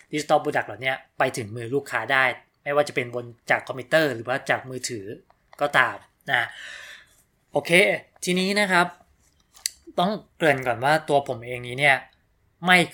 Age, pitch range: 20-39, 125-155 Hz